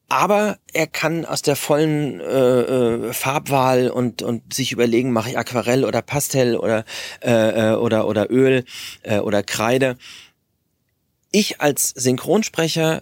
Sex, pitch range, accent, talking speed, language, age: male, 120-155 Hz, German, 140 wpm, German, 30-49